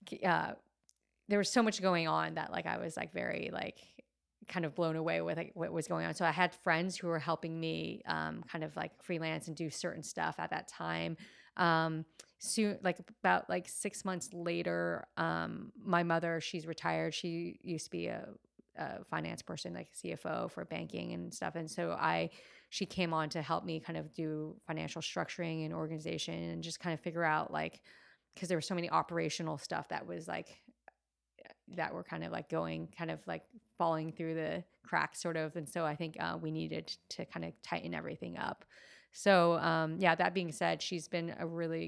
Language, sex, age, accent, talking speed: English, female, 20-39, American, 200 wpm